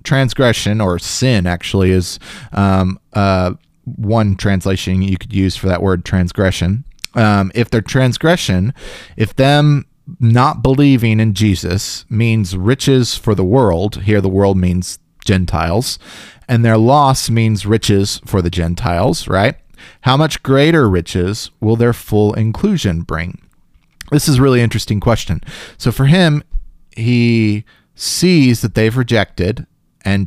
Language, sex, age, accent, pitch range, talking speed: English, male, 30-49, American, 95-125 Hz, 135 wpm